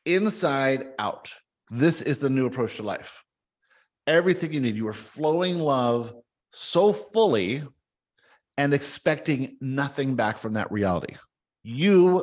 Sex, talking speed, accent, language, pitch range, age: male, 130 wpm, American, English, 120-170 Hz, 50-69